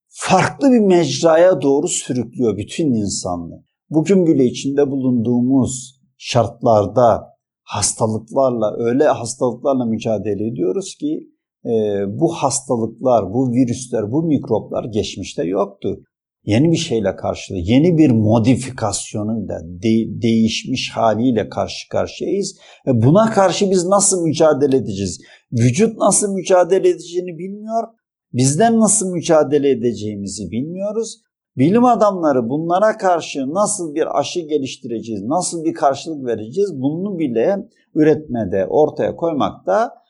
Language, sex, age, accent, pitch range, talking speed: Turkish, male, 50-69, native, 115-180 Hz, 110 wpm